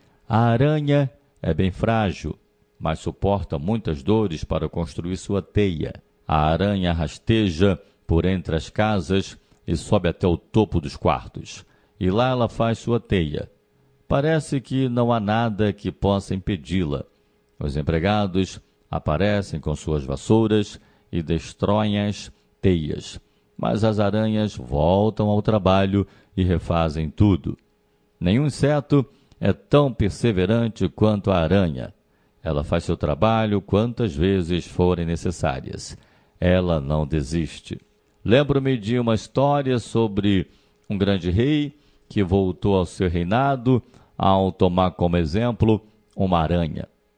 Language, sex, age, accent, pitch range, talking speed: Portuguese, male, 50-69, Brazilian, 85-115 Hz, 125 wpm